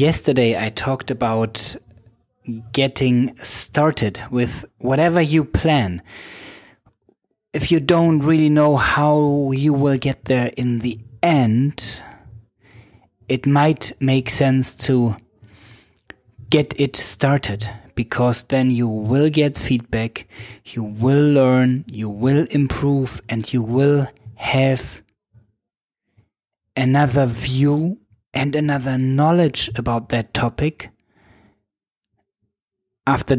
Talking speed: 100 wpm